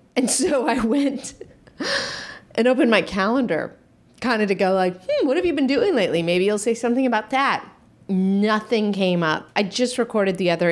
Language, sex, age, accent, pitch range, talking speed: English, female, 30-49, American, 170-235 Hz, 190 wpm